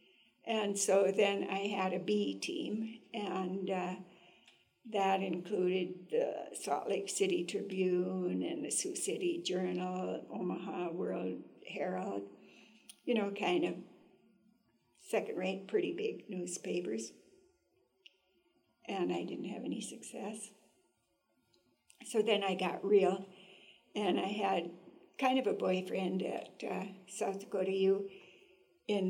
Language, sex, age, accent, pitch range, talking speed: English, female, 60-79, American, 185-210 Hz, 120 wpm